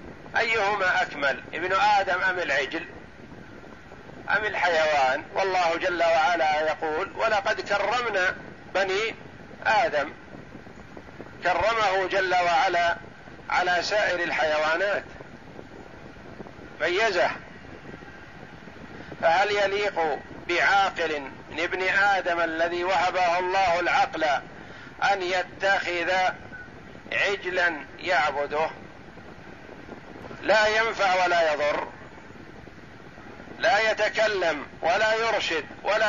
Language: Arabic